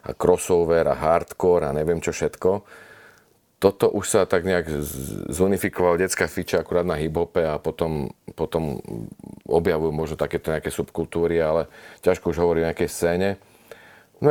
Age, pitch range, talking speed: 40-59, 85-90 Hz, 150 wpm